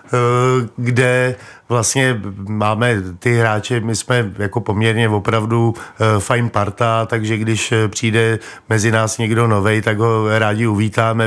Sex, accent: male, native